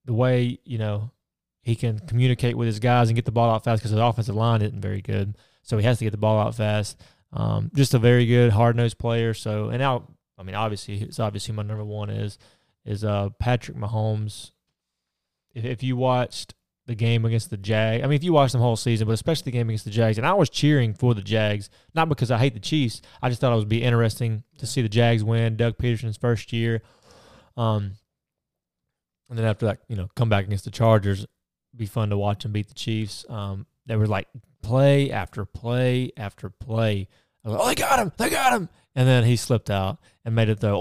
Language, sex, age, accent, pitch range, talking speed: English, male, 20-39, American, 110-125 Hz, 230 wpm